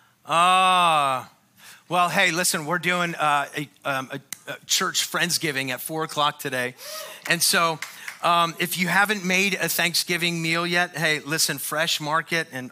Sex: male